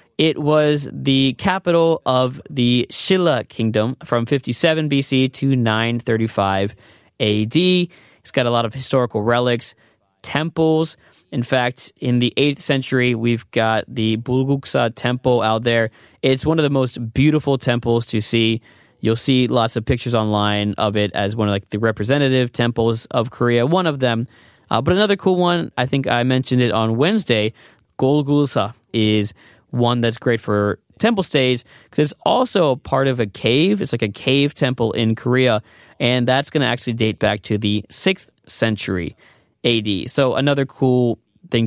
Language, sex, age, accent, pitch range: Korean, male, 20-39, American, 115-140 Hz